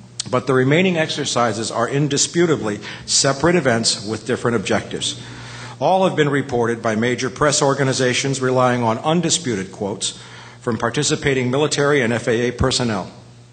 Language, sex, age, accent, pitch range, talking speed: English, male, 50-69, American, 120-150 Hz, 130 wpm